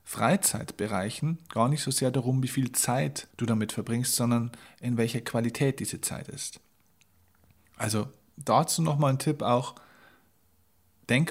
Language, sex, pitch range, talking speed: German, male, 110-145 Hz, 140 wpm